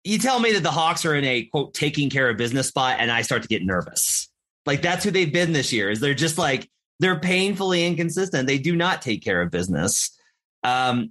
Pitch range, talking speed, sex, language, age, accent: 120-165 Hz, 230 wpm, male, English, 30-49, American